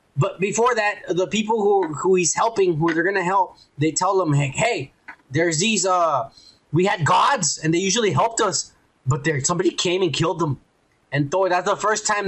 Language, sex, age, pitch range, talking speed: English, male, 20-39, 135-185 Hz, 210 wpm